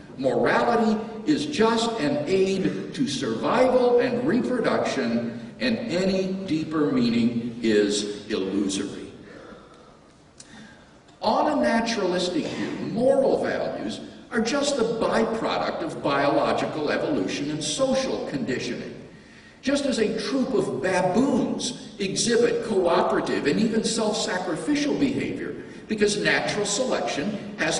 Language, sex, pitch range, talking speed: English, male, 185-255 Hz, 100 wpm